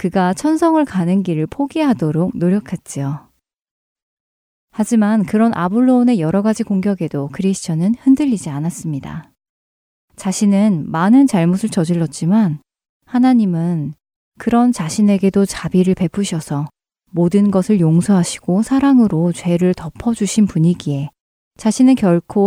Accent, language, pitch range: native, Korean, 170-230 Hz